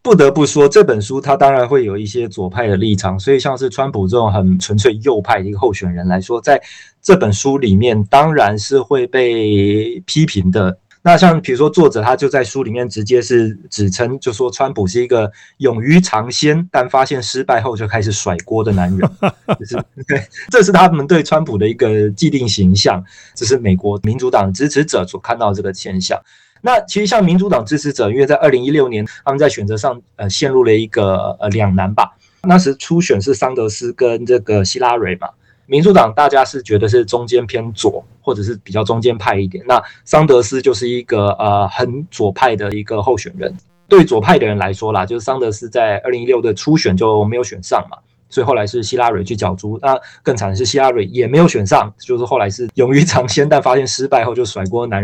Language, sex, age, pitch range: Chinese, male, 20-39, 105-140 Hz